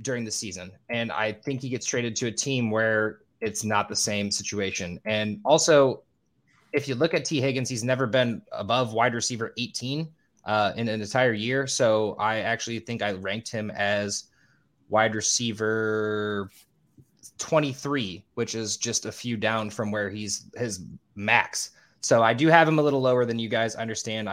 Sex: male